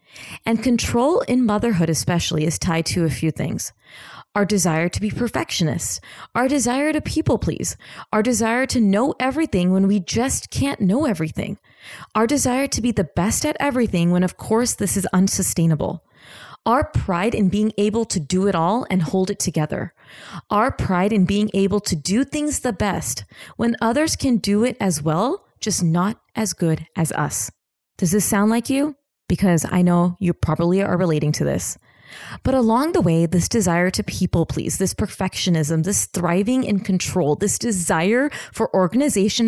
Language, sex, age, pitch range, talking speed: English, female, 30-49, 170-225 Hz, 175 wpm